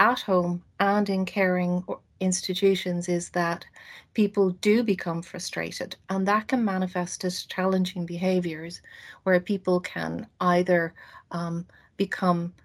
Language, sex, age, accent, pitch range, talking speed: English, female, 40-59, Irish, 175-200 Hz, 120 wpm